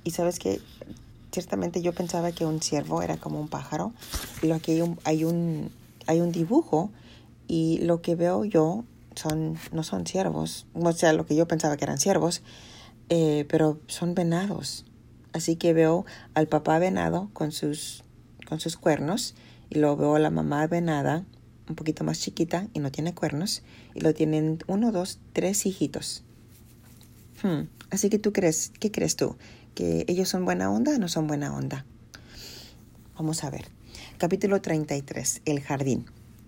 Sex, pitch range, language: female, 120-170 Hz, English